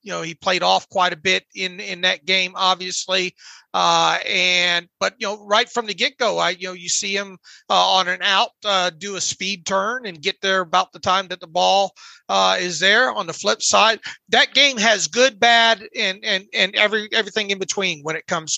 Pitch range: 180-215 Hz